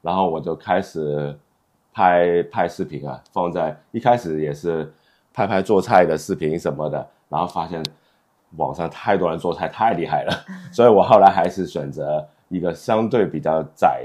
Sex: male